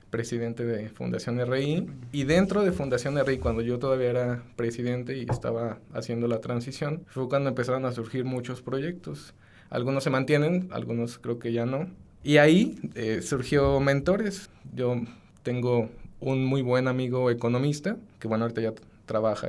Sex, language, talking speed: male, Spanish, 160 wpm